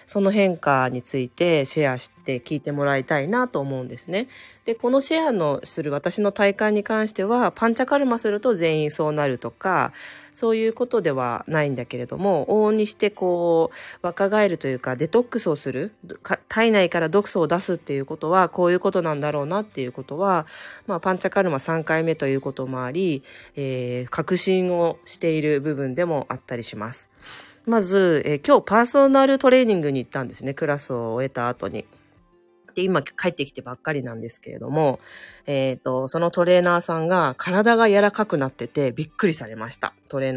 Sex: female